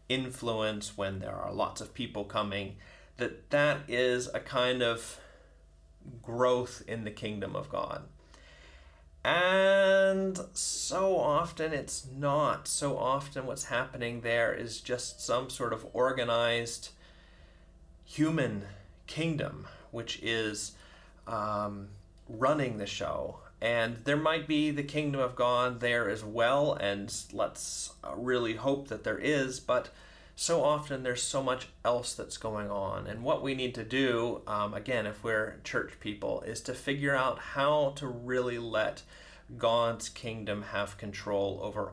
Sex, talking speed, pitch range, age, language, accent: male, 140 wpm, 100-130 Hz, 30-49, English, American